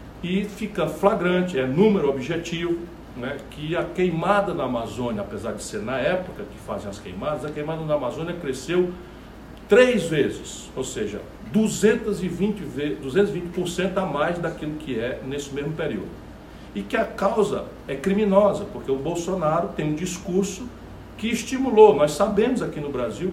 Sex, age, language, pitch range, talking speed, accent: male, 60-79, Portuguese, 150-200 Hz, 150 wpm, Brazilian